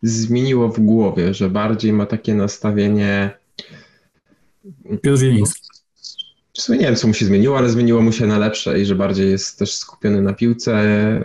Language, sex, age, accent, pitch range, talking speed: Polish, male, 20-39, native, 105-115 Hz, 160 wpm